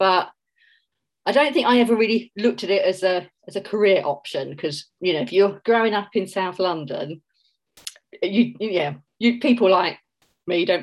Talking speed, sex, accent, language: 185 wpm, female, British, English